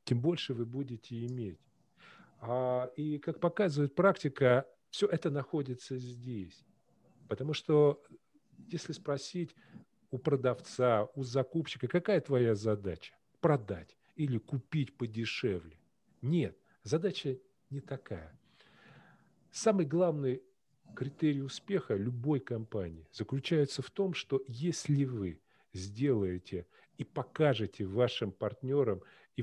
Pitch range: 125-160 Hz